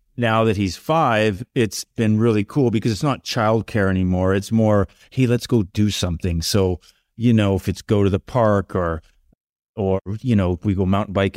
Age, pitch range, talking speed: 30-49, 95-115 Hz, 200 wpm